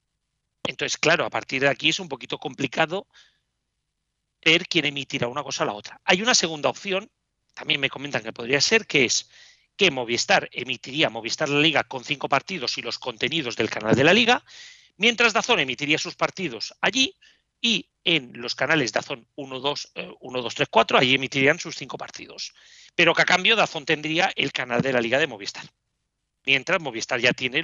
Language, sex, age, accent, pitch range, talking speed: Spanish, male, 40-59, Spanish, 140-195 Hz, 185 wpm